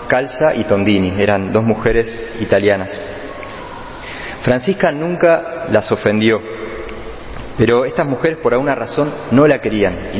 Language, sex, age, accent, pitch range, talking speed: Spanish, male, 20-39, Argentinian, 110-135 Hz, 125 wpm